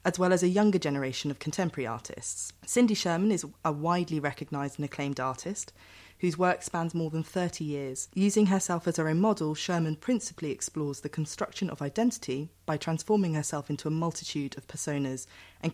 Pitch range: 145-180 Hz